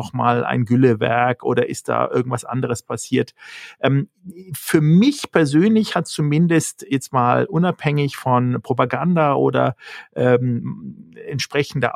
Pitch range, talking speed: 125-160 Hz, 110 wpm